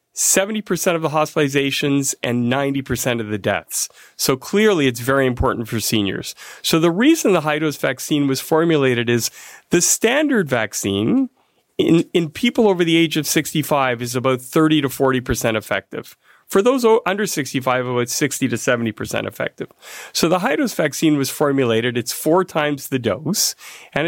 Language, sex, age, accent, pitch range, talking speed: English, male, 40-59, American, 120-155 Hz, 160 wpm